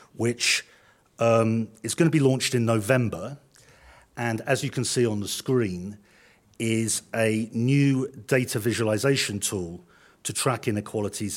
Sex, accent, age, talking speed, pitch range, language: male, British, 50-69, 135 wpm, 100-130 Hz, English